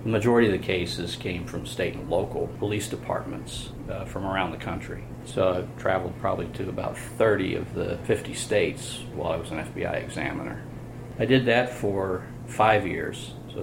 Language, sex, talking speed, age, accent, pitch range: English, male, 180 wpm, 50-69, American, 90-115 Hz